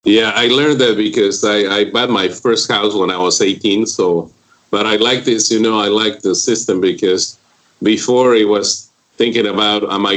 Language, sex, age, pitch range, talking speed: English, male, 40-59, 85-110 Hz, 200 wpm